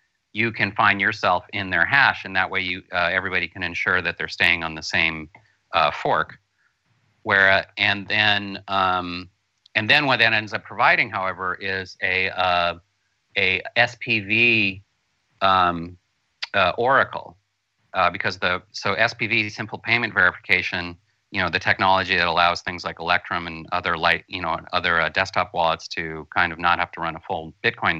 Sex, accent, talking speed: male, American, 170 wpm